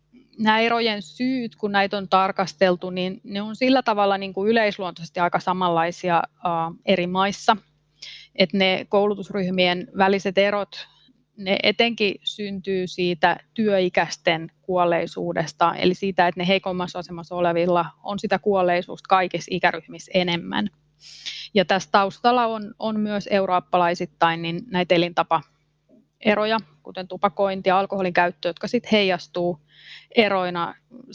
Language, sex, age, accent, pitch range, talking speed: Finnish, female, 30-49, native, 170-200 Hz, 120 wpm